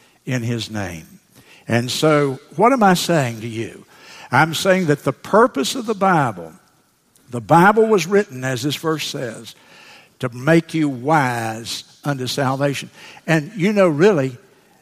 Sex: male